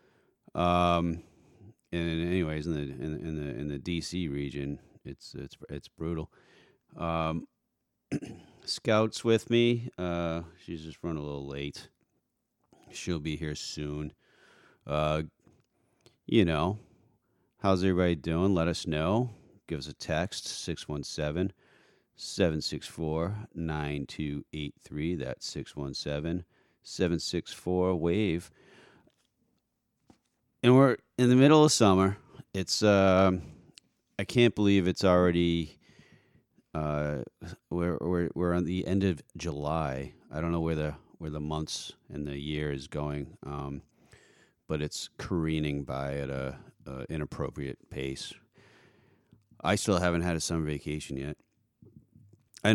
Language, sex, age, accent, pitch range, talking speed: English, male, 40-59, American, 75-95 Hz, 115 wpm